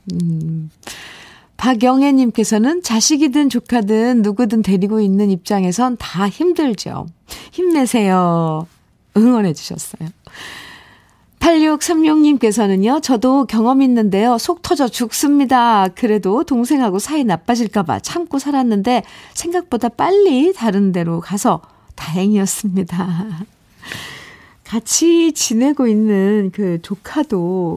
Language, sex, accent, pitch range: Korean, female, native, 190-265 Hz